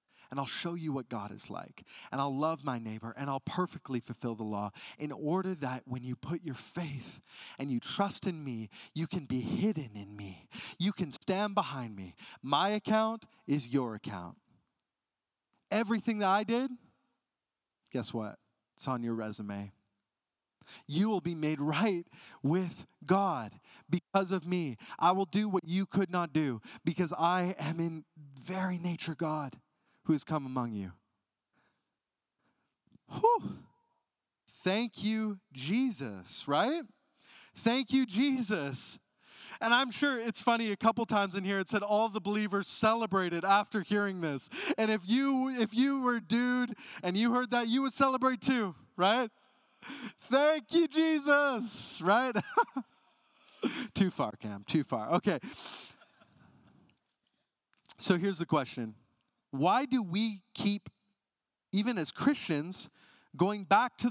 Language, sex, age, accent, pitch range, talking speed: English, male, 30-49, American, 150-240 Hz, 145 wpm